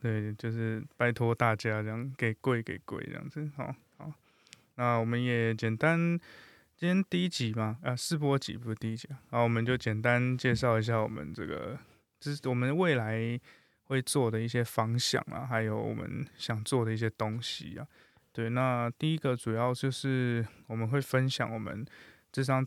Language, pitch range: Chinese, 115-140 Hz